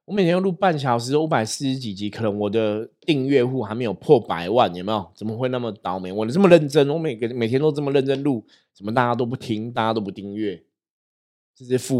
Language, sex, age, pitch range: Chinese, male, 20-39, 105-145 Hz